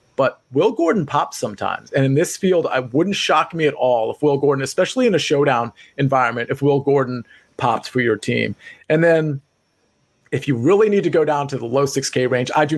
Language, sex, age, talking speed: English, male, 30-49, 215 wpm